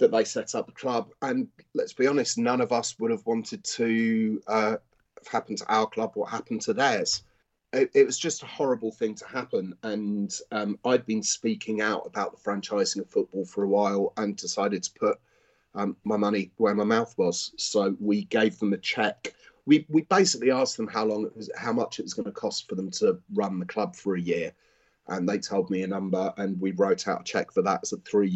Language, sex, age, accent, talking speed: English, male, 30-49, British, 230 wpm